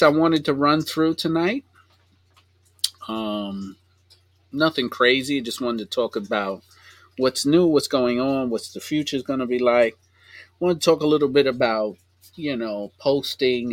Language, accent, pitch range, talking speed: English, American, 90-125 Hz, 160 wpm